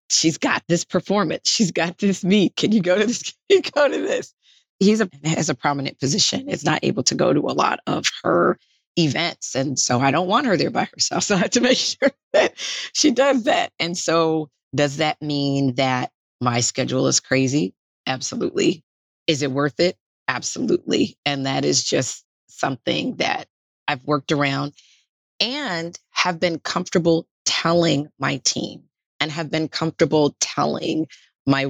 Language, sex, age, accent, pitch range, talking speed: English, female, 30-49, American, 140-170 Hz, 175 wpm